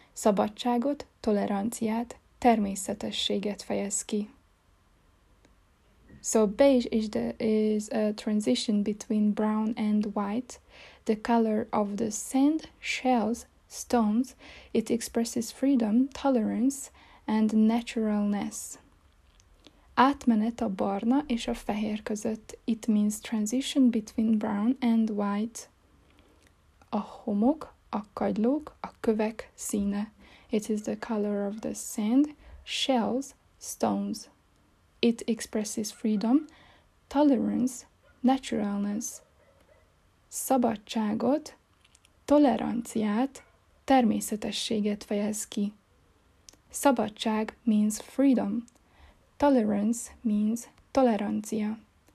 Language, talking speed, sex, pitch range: Hungarian, 85 wpm, female, 210-240 Hz